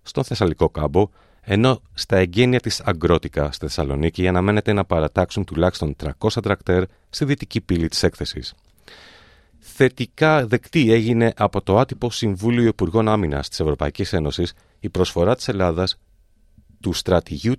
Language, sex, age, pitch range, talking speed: Greek, male, 40-59, 80-110 Hz, 135 wpm